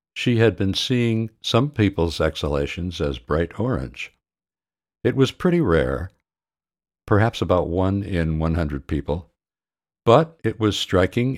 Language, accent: English, American